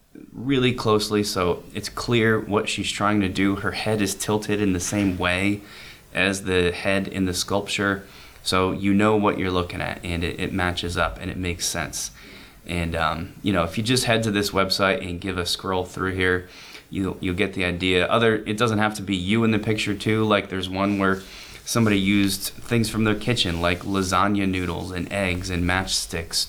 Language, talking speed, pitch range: English, 205 wpm, 90-105 Hz